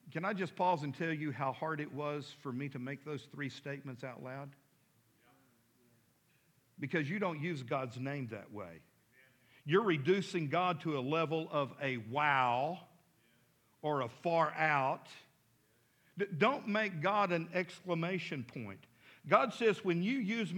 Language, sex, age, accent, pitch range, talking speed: English, male, 50-69, American, 145-210 Hz, 150 wpm